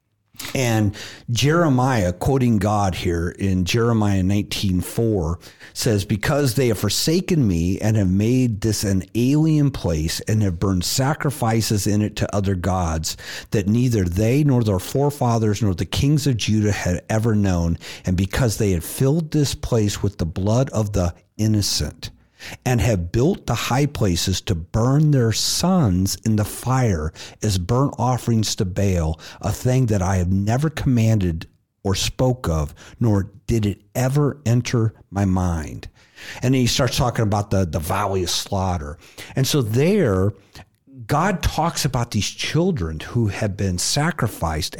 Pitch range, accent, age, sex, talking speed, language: 95-125 Hz, American, 50-69, male, 155 wpm, English